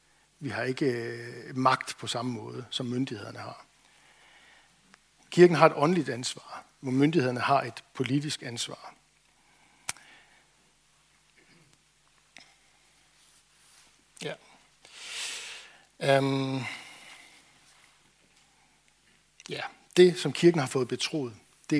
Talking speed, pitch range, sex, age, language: 85 wpm, 125-150 Hz, male, 60-79, Danish